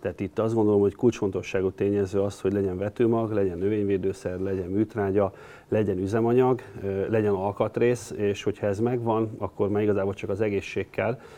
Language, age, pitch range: Hungarian, 30-49, 100-110 Hz